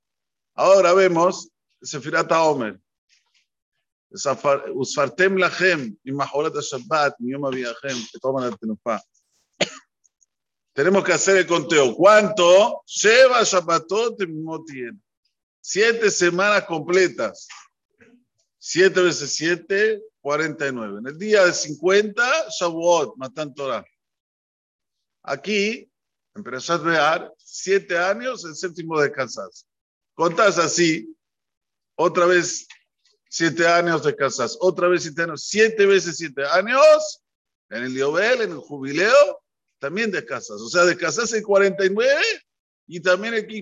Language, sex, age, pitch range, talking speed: Spanish, male, 50-69, 155-215 Hz, 105 wpm